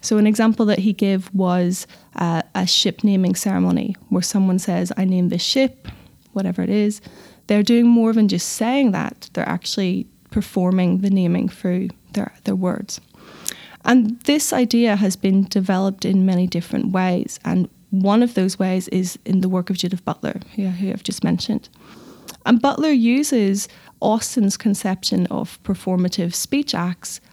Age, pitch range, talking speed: 10-29, 185-215 Hz, 160 wpm